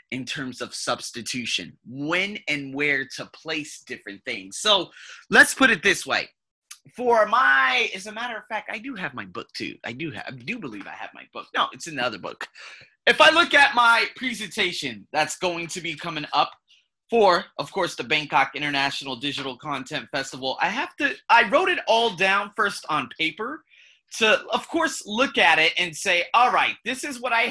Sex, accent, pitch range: male, American, 140-215 Hz